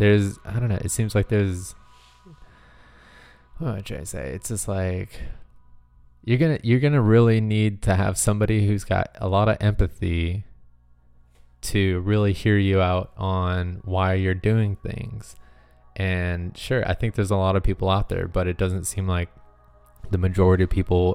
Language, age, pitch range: English, 20-39, 85-100 Hz